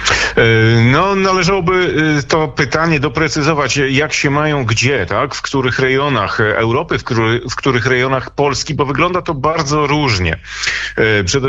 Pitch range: 125-150 Hz